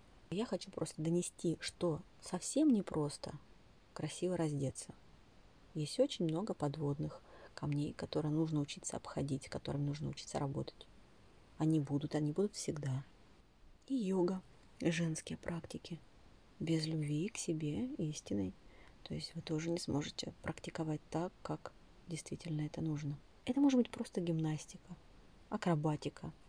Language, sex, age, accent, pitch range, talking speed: Russian, female, 30-49, native, 150-175 Hz, 125 wpm